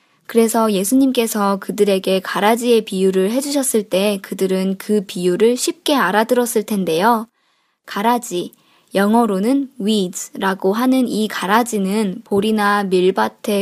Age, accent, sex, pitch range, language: 20-39, native, male, 200-255 Hz, Korean